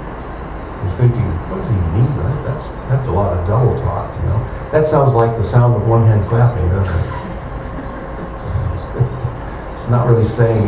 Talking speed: 175 wpm